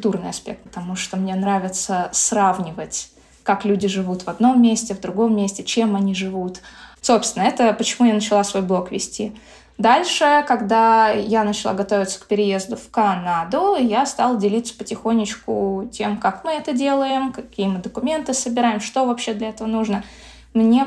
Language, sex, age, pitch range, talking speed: Russian, female, 20-39, 195-230 Hz, 155 wpm